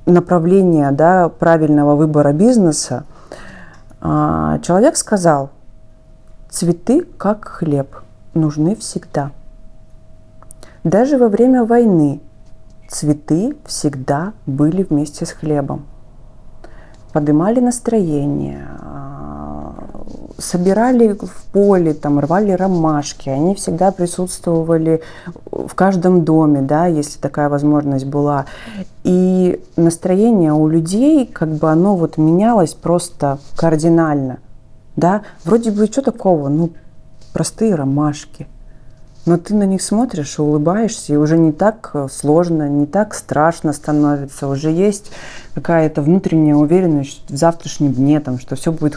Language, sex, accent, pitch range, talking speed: Russian, female, native, 140-185 Hz, 105 wpm